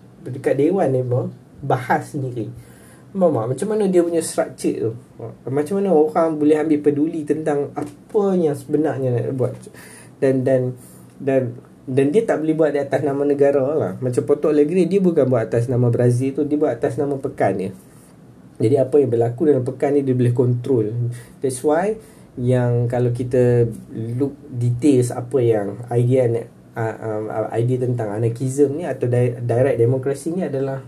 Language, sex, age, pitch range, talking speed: Malay, male, 20-39, 125-150 Hz, 170 wpm